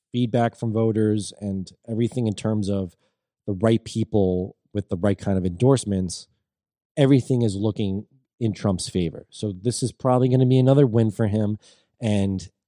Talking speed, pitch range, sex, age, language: 165 wpm, 95-115 Hz, male, 20-39, English